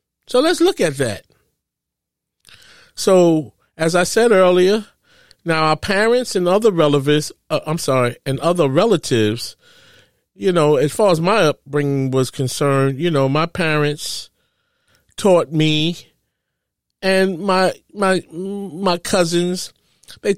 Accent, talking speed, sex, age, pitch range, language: American, 120 wpm, male, 40-59, 145-190 Hz, English